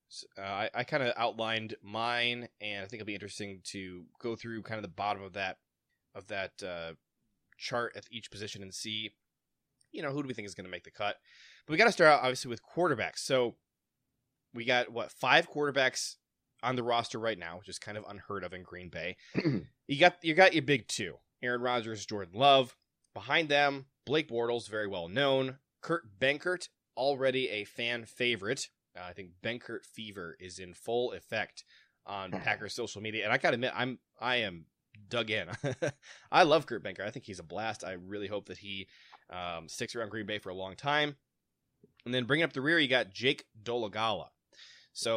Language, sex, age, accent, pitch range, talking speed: English, male, 20-39, American, 105-135 Hz, 200 wpm